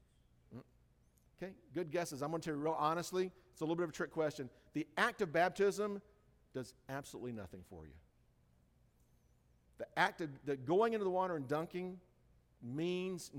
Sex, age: male, 50-69